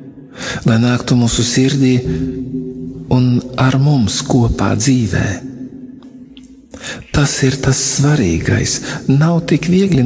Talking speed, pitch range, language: 95 wpm, 105-145 Hz, English